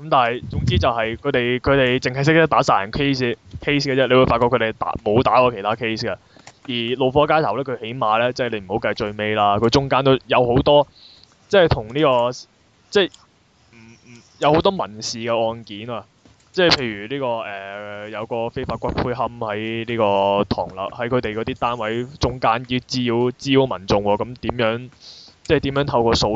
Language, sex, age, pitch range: Chinese, male, 20-39, 110-135 Hz